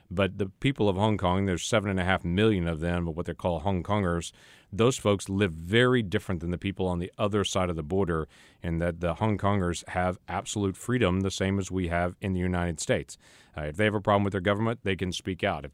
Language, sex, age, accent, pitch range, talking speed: English, male, 40-59, American, 90-105 Hz, 250 wpm